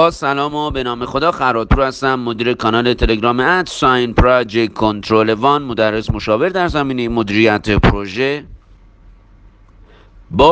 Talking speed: 130 wpm